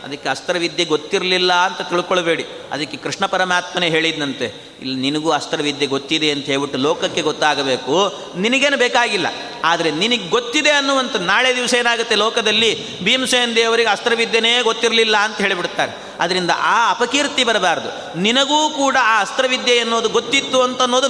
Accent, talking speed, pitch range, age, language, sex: native, 125 wpm, 175-240 Hz, 30-49, Kannada, male